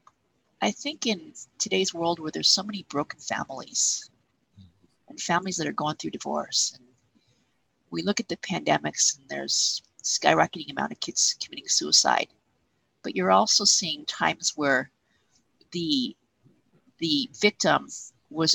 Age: 50-69